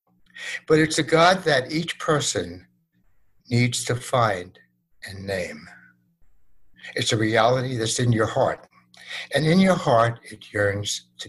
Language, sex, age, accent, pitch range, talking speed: English, male, 60-79, American, 95-140 Hz, 140 wpm